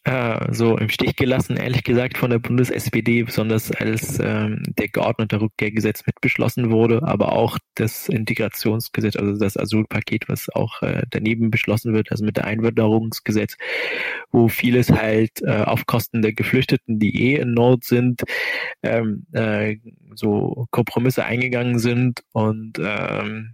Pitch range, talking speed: 110-120 Hz, 145 wpm